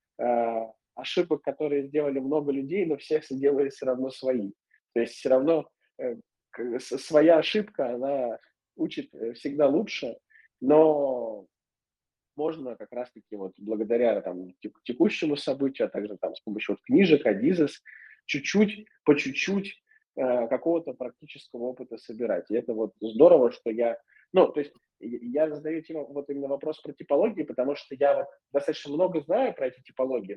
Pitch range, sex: 120-155 Hz, male